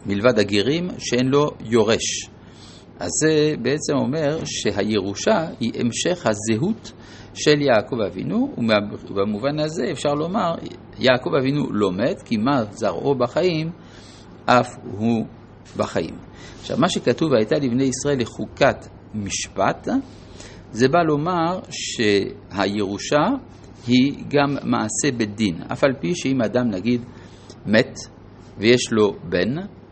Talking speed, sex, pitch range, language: 115 wpm, male, 105-135 Hz, Hebrew